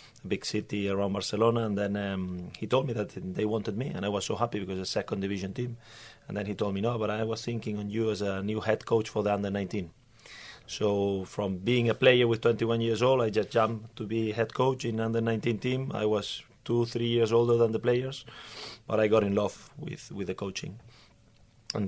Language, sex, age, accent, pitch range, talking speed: Swedish, male, 30-49, Spanish, 100-115 Hz, 230 wpm